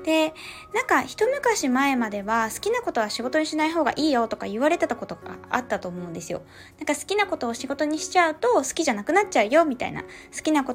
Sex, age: female, 20-39